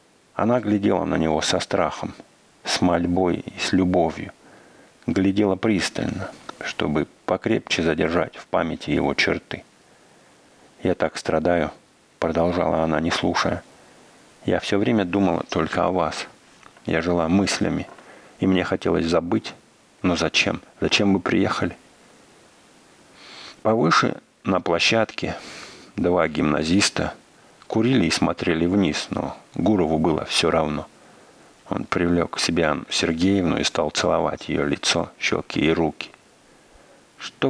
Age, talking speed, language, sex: 50-69, 120 wpm, English, male